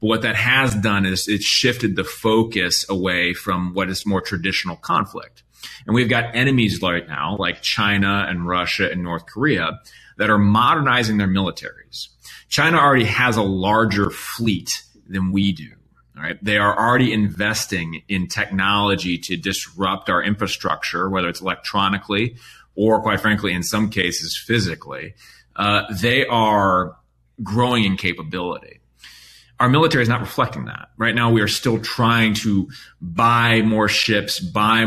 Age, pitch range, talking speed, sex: 30-49, 95-110 Hz, 150 wpm, male